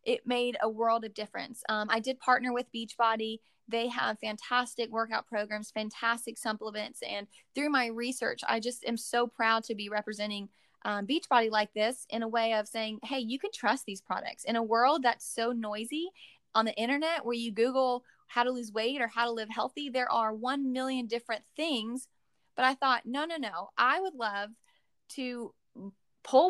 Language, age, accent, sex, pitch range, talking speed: English, 20-39, American, female, 215-255 Hz, 190 wpm